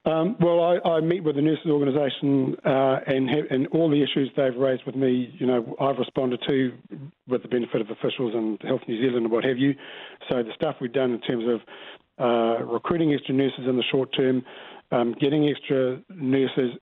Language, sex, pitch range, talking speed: English, male, 130-155 Hz, 205 wpm